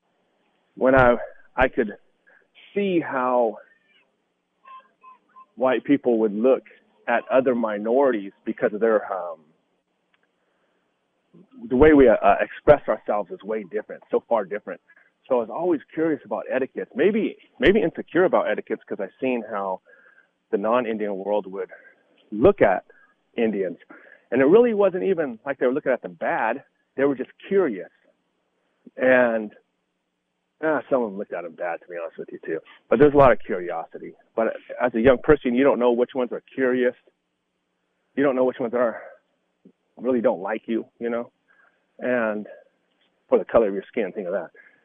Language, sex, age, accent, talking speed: English, male, 30-49, American, 165 wpm